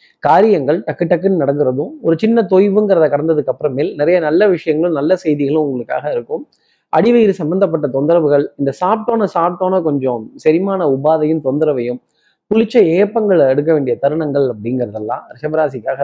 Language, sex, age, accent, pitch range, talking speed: Tamil, male, 20-39, native, 150-195 Hz, 125 wpm